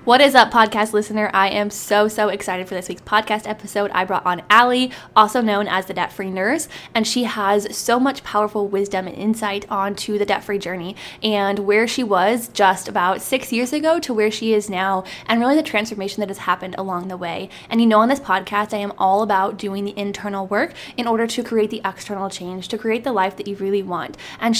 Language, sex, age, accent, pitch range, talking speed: English, female, 10-29, American, 200-235 Hz, 225 wpm